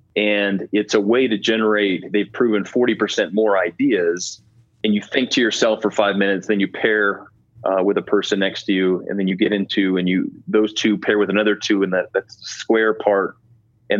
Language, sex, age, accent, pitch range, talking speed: English, male, 30-49, American, 100-115 Hz, 205 wpm